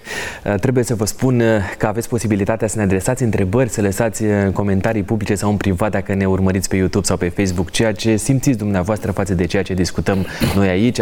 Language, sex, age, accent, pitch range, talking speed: Romanian, male, 20-39, native, 100-120 Hz, 205 wpm